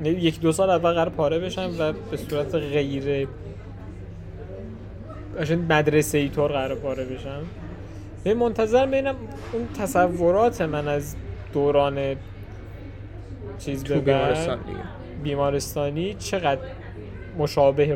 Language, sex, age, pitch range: Persian, male, 20-39, 105-165 Hz